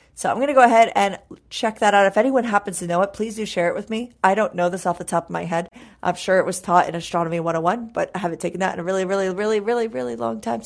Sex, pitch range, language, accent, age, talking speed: female, 175-210 Hz, English, American, 30-49, 305 wpm